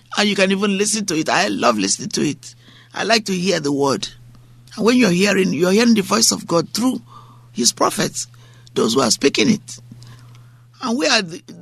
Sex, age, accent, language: male, 50-69, Nigerian, English